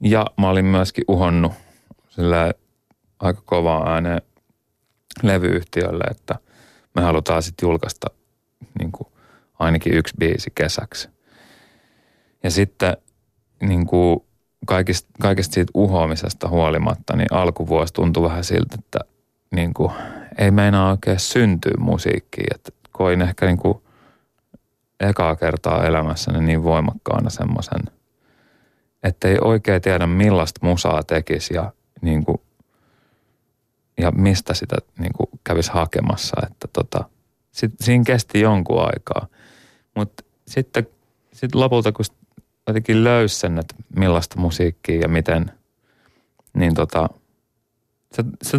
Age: 30-49